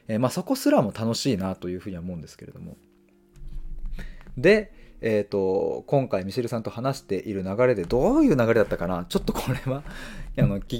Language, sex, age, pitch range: Japanese, male, 20-39, 95-135 Hz